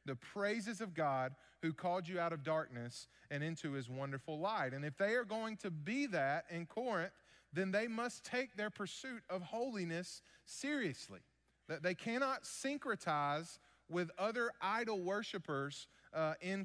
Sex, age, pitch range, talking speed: male, 30-49, 150-195 Hz, 160 wpm